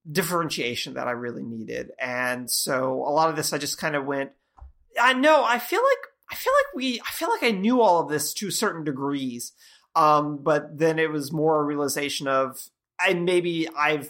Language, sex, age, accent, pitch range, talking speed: English, male, 30-49, American, 130-165 Hz, 205 wpm